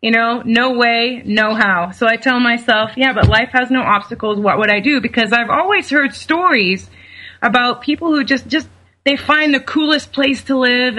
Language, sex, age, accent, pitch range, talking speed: English, female, 30-49, American, 205-255 Hz, 200 wpm